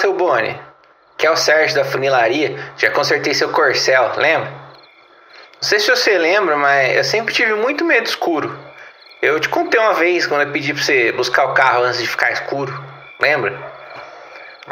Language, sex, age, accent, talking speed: Portuguese, male, 20-39, Brazilian, 180 wpm